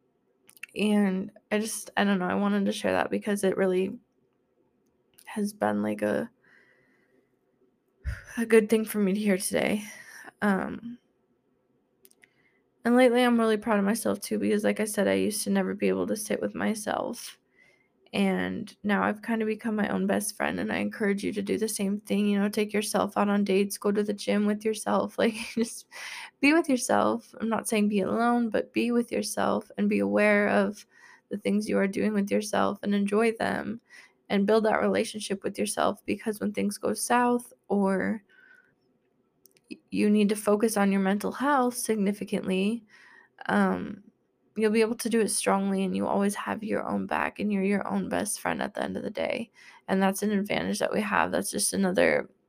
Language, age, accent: English, 20-39, American